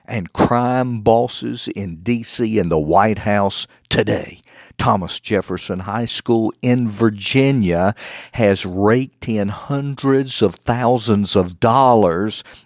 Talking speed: 115 wpm